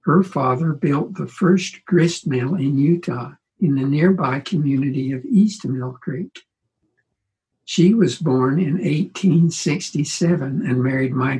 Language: English